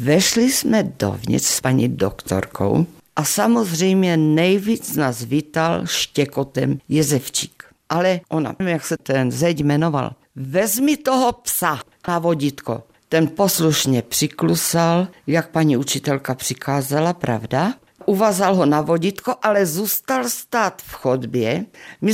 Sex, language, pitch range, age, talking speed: female, Czech, 145-205 Hz, 50-69, 115 wpm